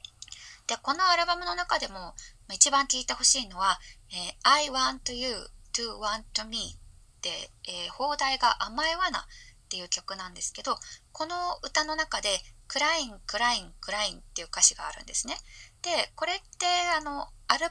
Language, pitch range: Japanese, 185-305 Hz